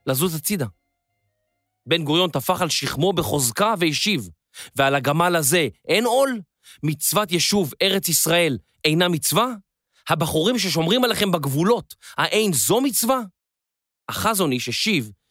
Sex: male